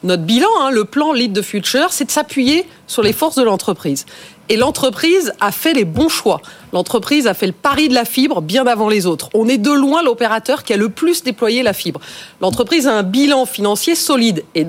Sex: female